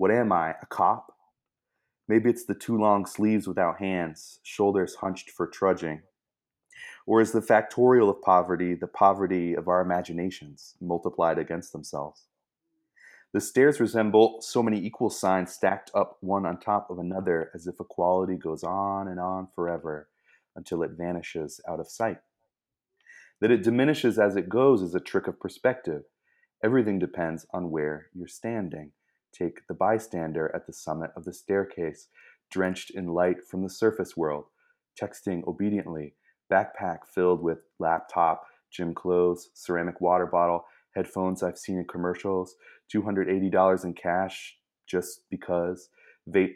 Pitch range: 85-100 Hz